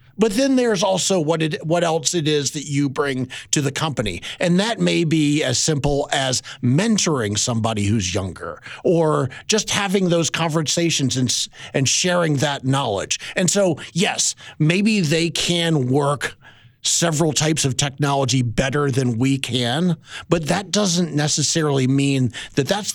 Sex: male